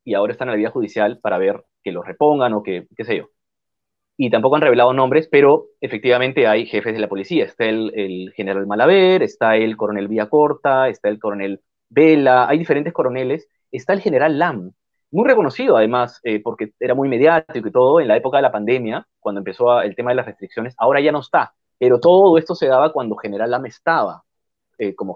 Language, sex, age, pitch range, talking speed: Spanish, male, 30-49, 105-175 Hz, 210 wpm